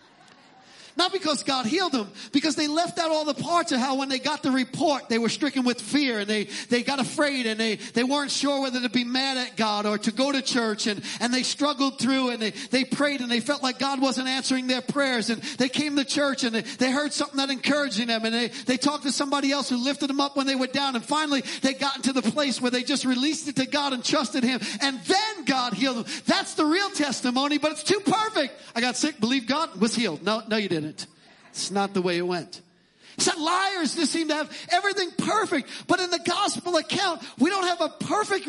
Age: 40-59